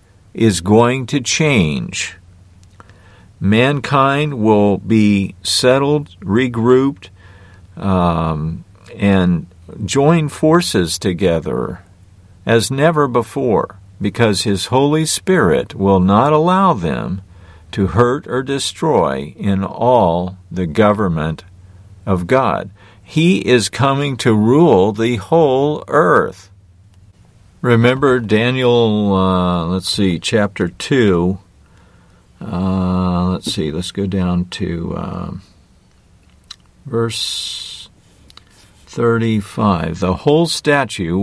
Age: 50-69